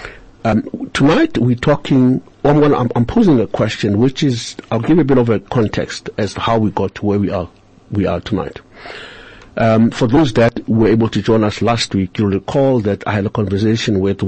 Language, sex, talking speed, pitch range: English, male, 215 wpm, 95-115 Hz